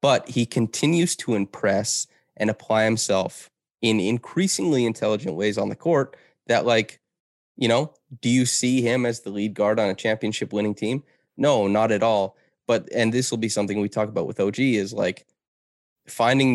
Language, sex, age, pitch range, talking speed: English, male, 20-39, 100-120 Hz, 180 wpm